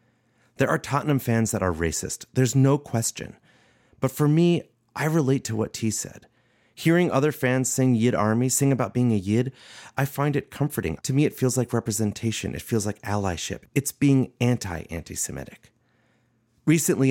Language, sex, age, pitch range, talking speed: English, male, 30-49, 105-135 Hz, 175 wpm